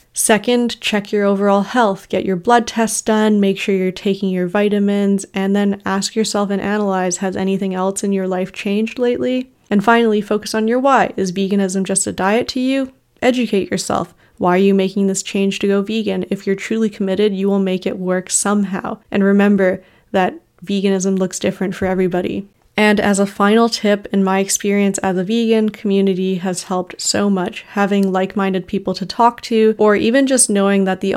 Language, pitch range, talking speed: English, 190-210 Hz, 195 wpm